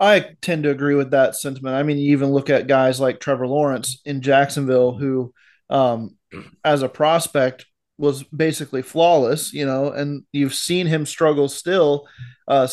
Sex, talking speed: male, 170 wpm